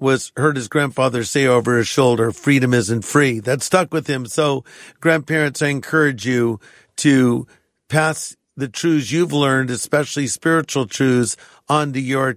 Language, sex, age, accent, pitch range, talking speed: English, male, 50-69, American, 130-150 Hz, 150 wpm